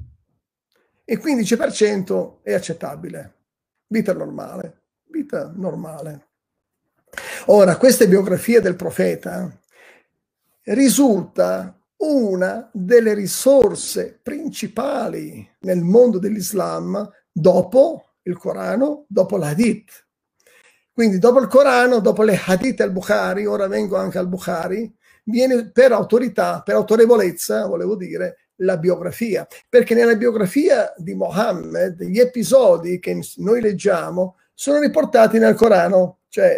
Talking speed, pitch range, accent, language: 105 wpm, 185-240 Hz, native, Italian